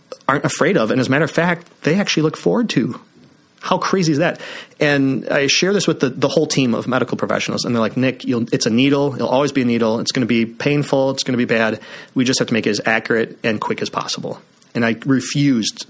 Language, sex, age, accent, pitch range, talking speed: English, male, 30-49, American, 115-140 Hz, 255 wpm